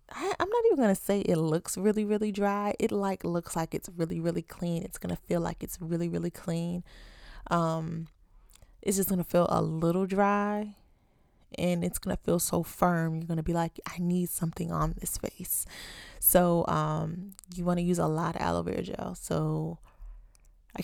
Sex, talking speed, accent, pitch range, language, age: female, 185 wpm, American, 165-195 Hz, English, 20-39